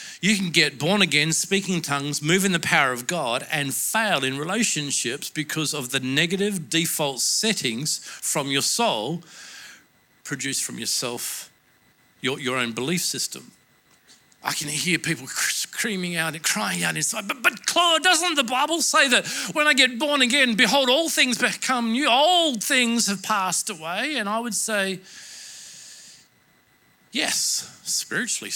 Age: 50-69